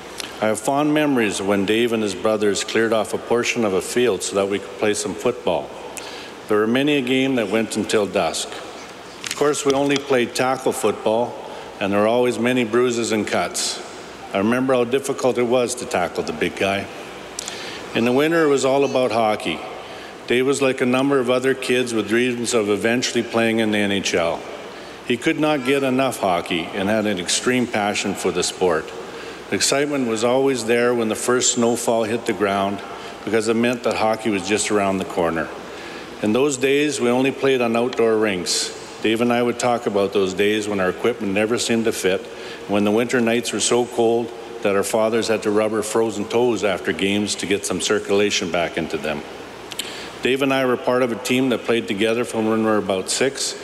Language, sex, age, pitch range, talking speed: English, male, 50-69, 105-125 Hz, 205 wpm